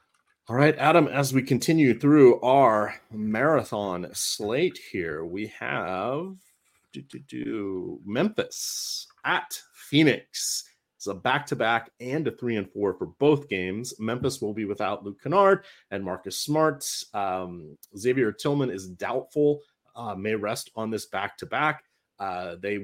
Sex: male